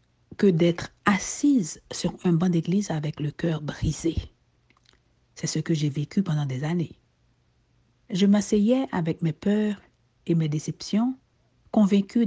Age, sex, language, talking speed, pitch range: 60-79, female, French, 135 wpm, 165-215 Hz